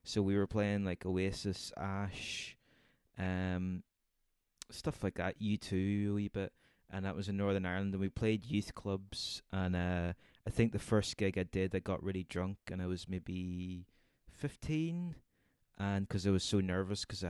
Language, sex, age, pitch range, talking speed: English, male, 20-39, 90-100 Hz, 175 wpm